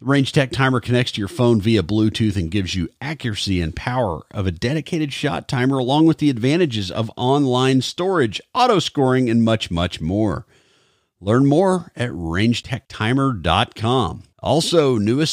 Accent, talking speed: American, 155 wpm